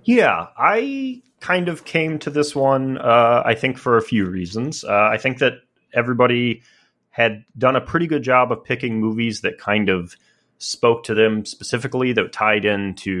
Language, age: English, 30-49